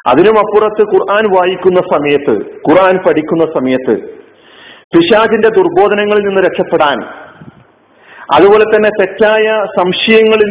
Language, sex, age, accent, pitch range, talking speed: Malayalam, male, 40-59, native, 180-215 Hz, 90 wpm